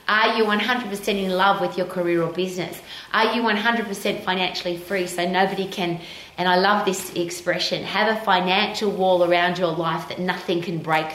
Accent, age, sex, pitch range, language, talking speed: Australian, 30-49, female, 160-195 Hz, English, 185 wpm